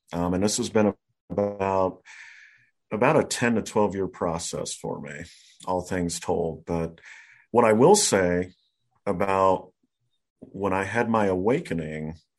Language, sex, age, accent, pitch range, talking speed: English, male, 40-59, American, 85-105 Hz, 140 wpm